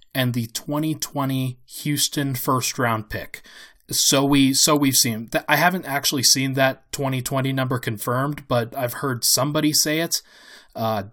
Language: English